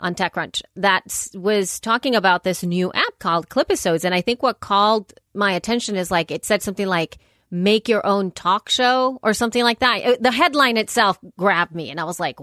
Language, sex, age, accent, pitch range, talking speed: English, female, 30-49, American, 175-225 Hz, 205 wpm